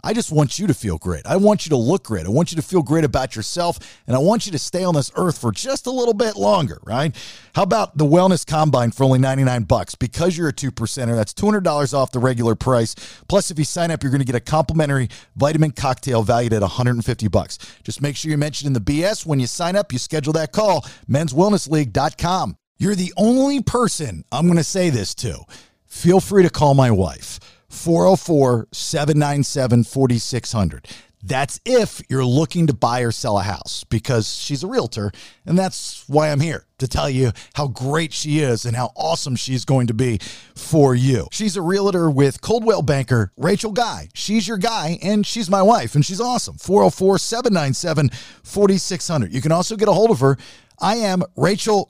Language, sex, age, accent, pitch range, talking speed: English, male, 40-59, American, 125-180 Hz, 200 wpm